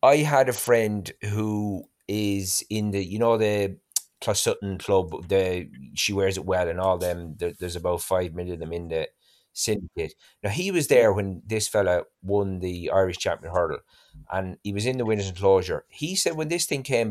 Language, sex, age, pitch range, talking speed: English, male, 30-49, 90-115 Hz, 200 wpm